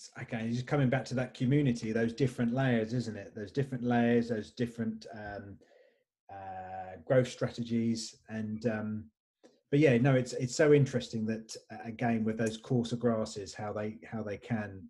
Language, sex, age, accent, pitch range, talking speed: English, male, 30-49, British, 110-130 Hz, 165 wpm